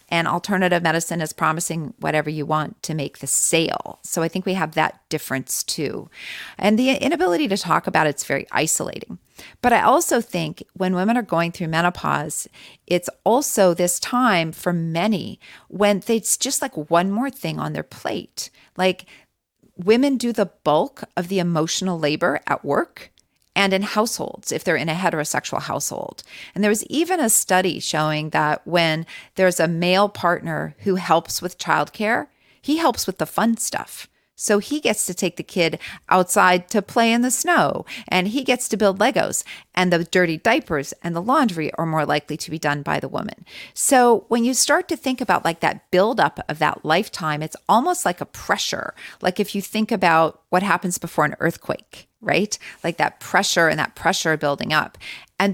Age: 40-59